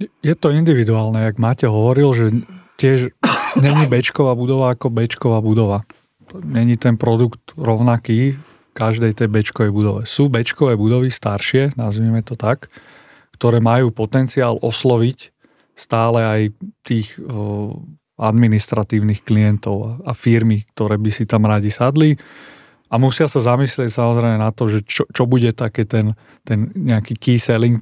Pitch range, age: 110-130 Hz, 30-49